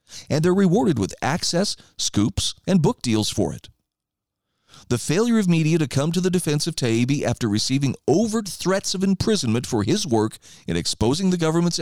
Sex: male